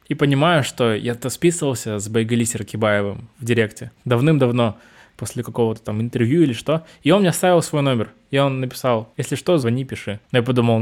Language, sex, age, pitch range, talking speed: Russian, male, 20-39, 115-135 Hz, 185 wpm